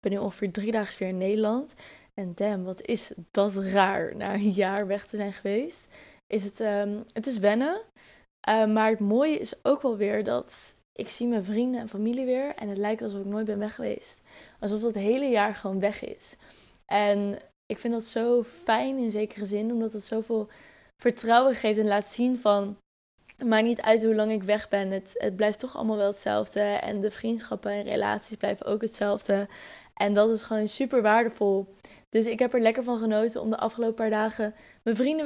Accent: Dutch